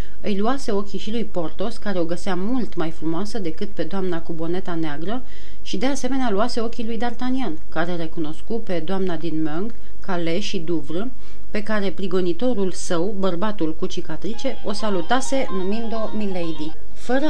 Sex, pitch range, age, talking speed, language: female, 175-210 Hz, 40-59, 165 wpm, Romanian